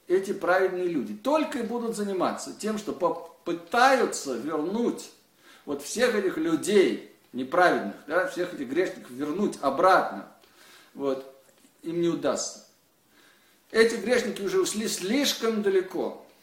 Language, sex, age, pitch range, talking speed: Russian, male, 50-69, 140-210 Hz, 115 wpm